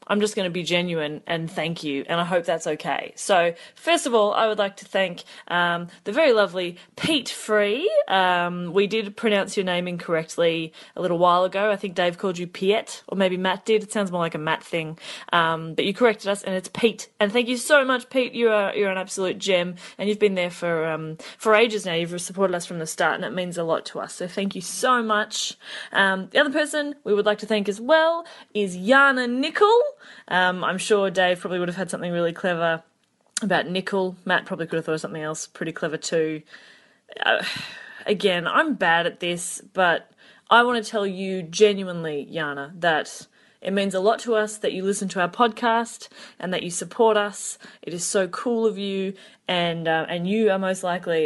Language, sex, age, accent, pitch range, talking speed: English, female, 20-39, Australian, 170-215 Hz, 220 wpm